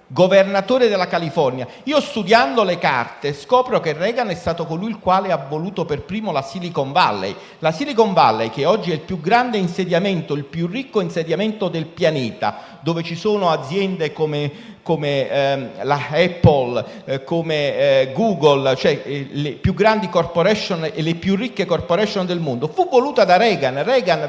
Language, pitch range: Italian, 155-210 Hz